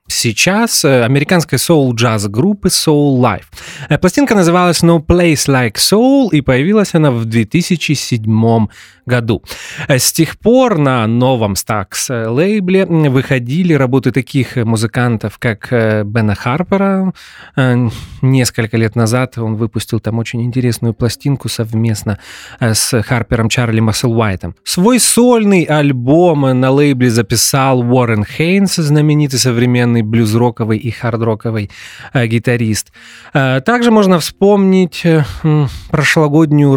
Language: Russian